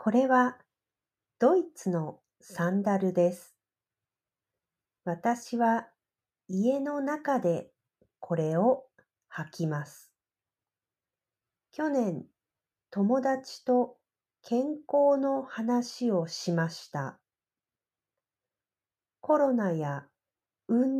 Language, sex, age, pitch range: Japanese, female, 50-69, 165-250 Hz